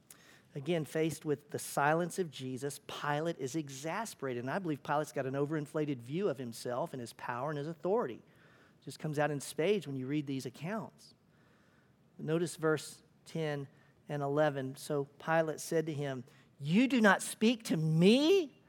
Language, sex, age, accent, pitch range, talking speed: English, male, 50-69, American, 145-210 Hz, 170 wpm